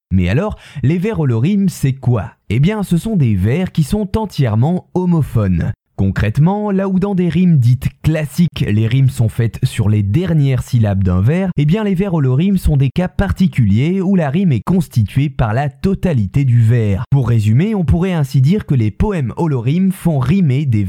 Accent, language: French, French